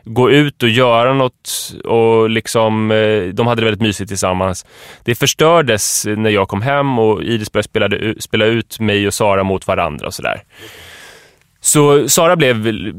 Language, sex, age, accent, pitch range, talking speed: English, male, 20-39, Swedish, 100-130 Hz, 150 wpm